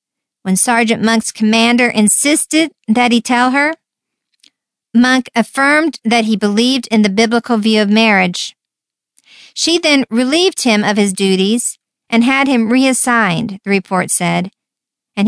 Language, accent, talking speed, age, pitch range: English, American, 140 wpm, 50-69, 215-265 Hz